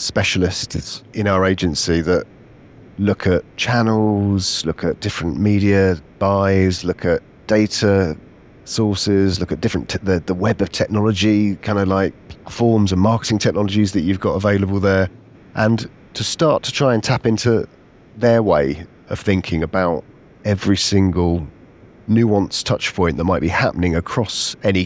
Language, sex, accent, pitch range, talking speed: English, male, British, 95-110 Hz, 150 wpm